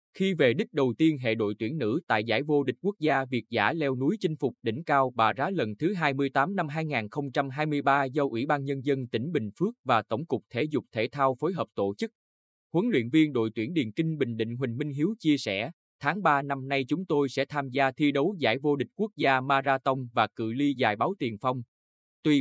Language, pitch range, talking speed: Vietnamese, 115-150 Hz, 235 wpm